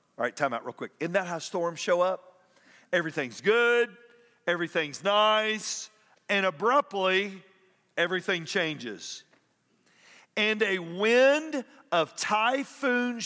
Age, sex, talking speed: 50-69, male, 115 wpm